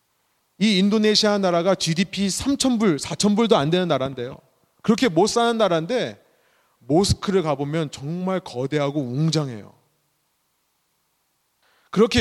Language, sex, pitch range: Korean, male, 140-195 Hz